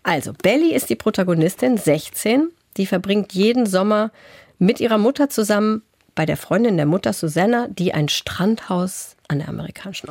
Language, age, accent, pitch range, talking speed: German, 50-69, German, 150-195 Hz, 155 wpm